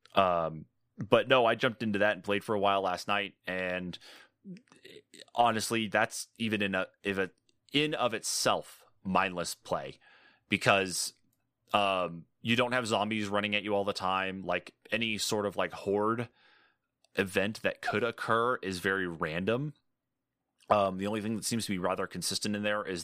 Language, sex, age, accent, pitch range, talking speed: English, male, 30-49, American, 90-105 Hz, 170 wpm